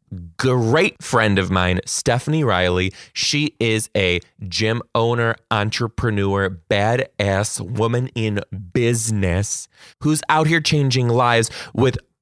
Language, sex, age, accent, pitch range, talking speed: English, male, 20-39, American, 115-165 Hz, 110 wpm